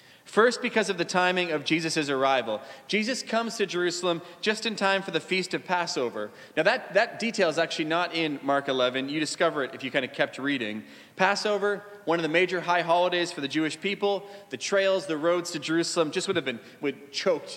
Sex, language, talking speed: male, English, 210 wpm